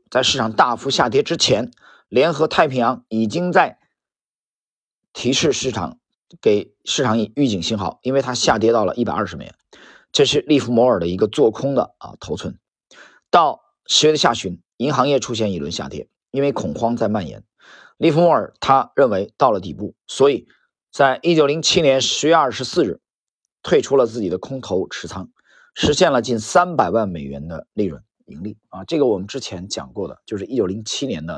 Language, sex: Chinese, male